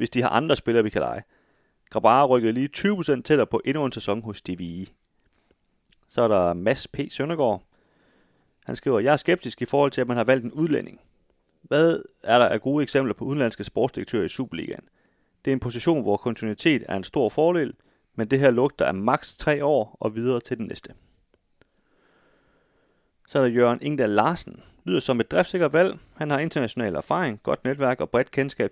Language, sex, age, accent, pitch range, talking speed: Danish, male, 30-49, native, 110-145 Hz, 195 wpm